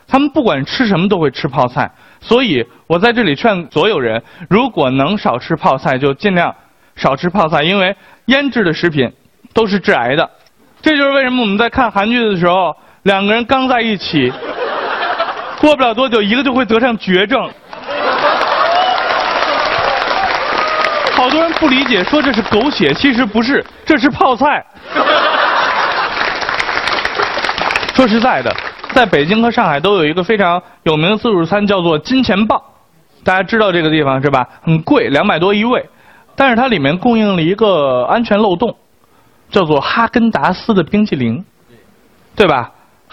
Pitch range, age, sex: 175-245 Hz, 20-39, male